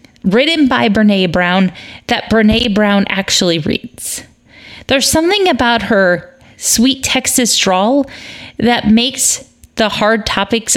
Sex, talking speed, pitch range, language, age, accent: female, 115 wpm, 180-235 Hz, English, 30-49, American